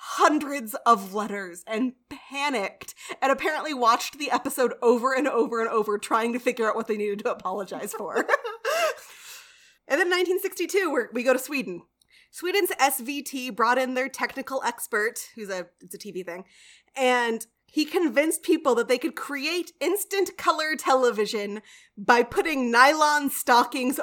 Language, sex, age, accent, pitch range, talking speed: English, female, 20-39, American, 225-310 Hz, 150 wpm